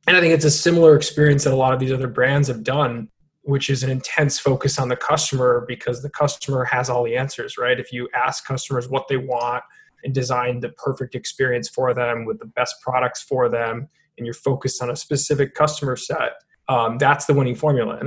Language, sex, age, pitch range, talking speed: English, male, 20-39, 125-150 Hz, 220 wpm